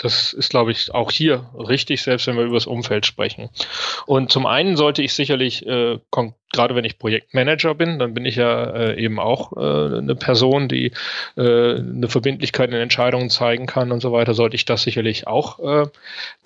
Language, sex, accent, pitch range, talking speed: German, male, German, 120-155 Hz, 195 wpm